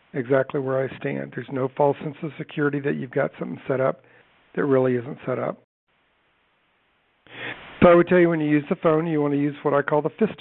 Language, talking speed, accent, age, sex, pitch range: English, 230 wpm, American, 50-69, male, 135-155 Hz